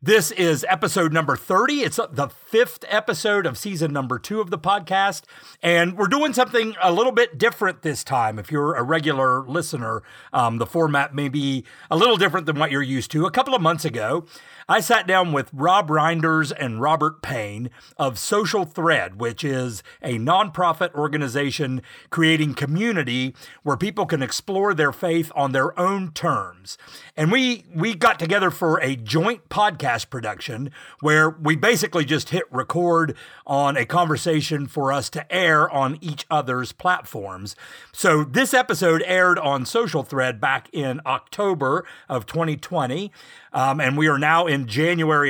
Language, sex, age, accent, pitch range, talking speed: English, male, 40-59, American, 140-185 Hz, 165 wpm